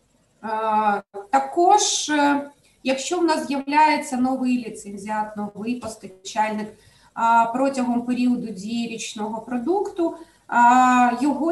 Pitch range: 210-275 Hz